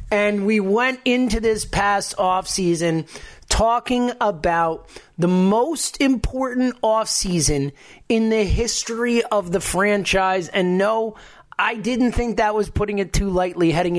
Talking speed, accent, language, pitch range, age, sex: 135 wpm, American, English, 175-230 Hz, 30-49, male